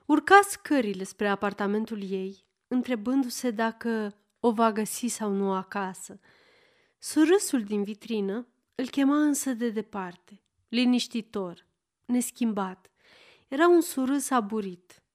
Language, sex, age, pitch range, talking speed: Romanian, female, 30-49, 200-275 Hz, 105 wpm